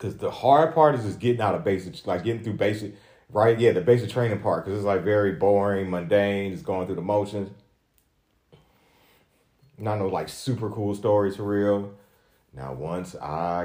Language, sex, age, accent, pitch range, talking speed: English, male, 30-49, American, 90-110 Hz, 185 wpm